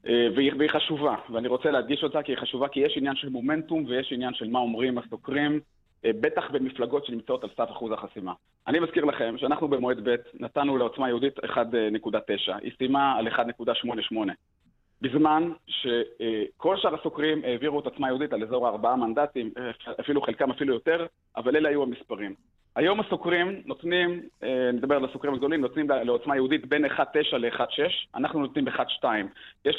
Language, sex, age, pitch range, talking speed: Hebrew, male, 30-49, 120-150 Hz, 155 wpm